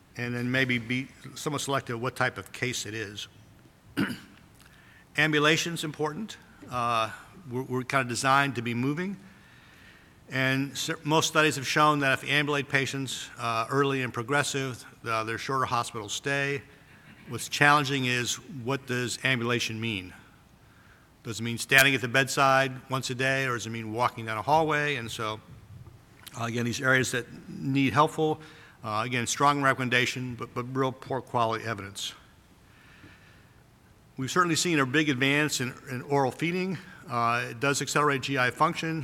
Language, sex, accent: English, male, American